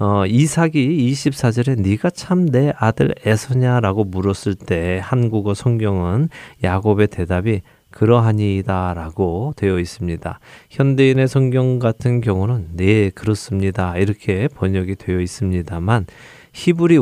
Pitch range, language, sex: 95-125 Hz, Korean, male